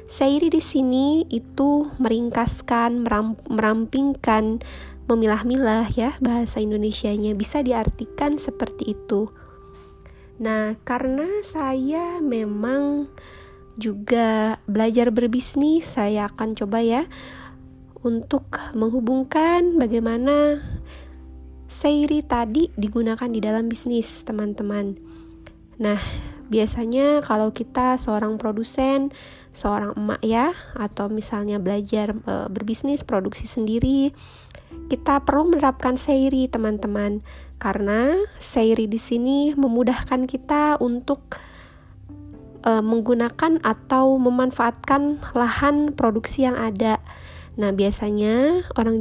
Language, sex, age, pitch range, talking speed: Indonesian, female, 20-39, 215-275 Hz, 90 wpm